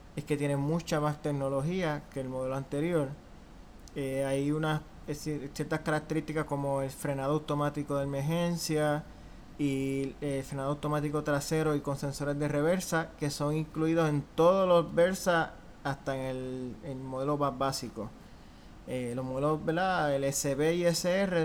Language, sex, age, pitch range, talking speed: Spanish, male, 20-39, 140-165 Hz, 150 wpm